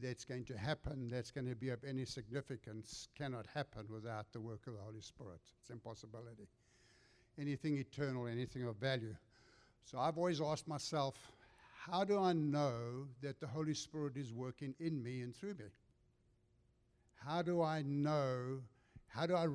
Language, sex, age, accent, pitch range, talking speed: English, male, 60-79, South African, 120-150 Hz, 165 wpm